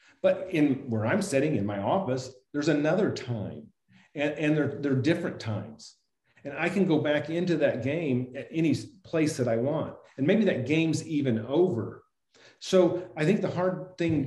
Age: 40-59